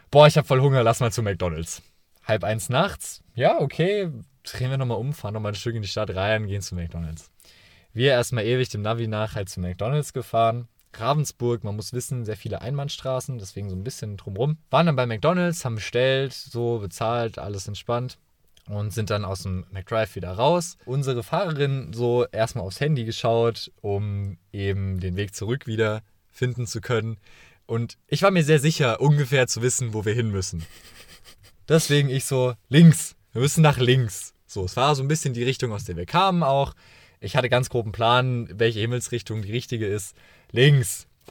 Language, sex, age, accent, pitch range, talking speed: German, male, 20-39, German, 105-130 Hz, 190 wpm